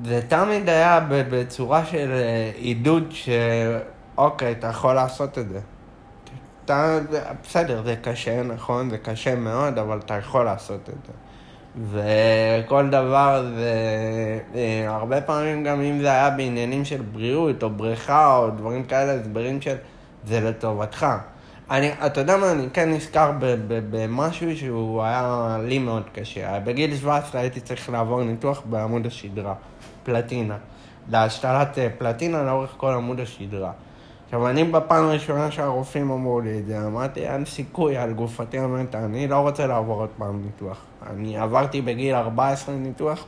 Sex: male